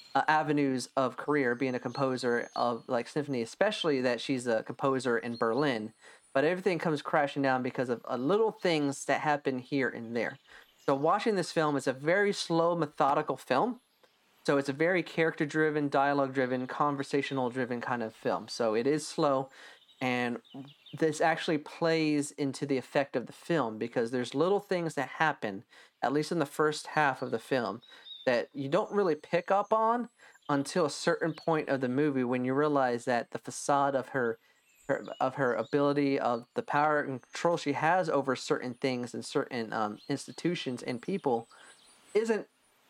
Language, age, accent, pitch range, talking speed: English, 30-49, American, 130-155 Hz, 180 wpm